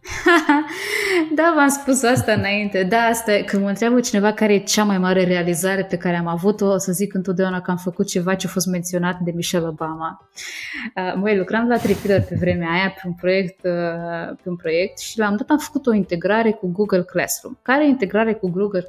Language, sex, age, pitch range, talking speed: Romanian, female, 20-39, 180-225 Hz, 210 wpm